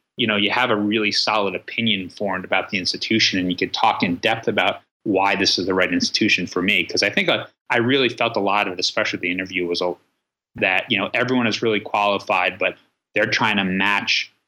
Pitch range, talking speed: 95-110 Hz, 225 wpm